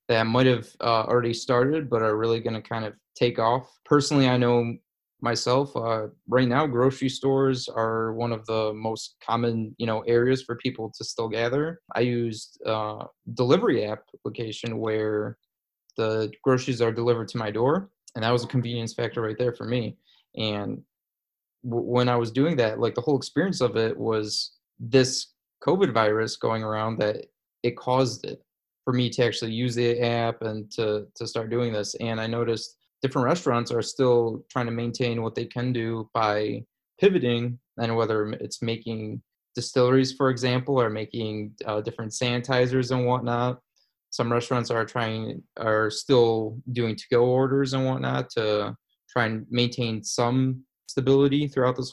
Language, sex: English, male